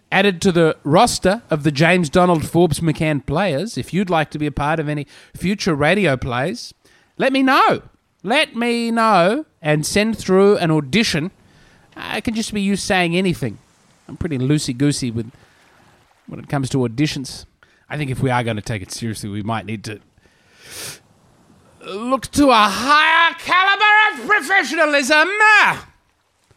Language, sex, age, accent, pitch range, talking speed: English, male, 30-49, Australian, 130-205 Hz, 160 wpm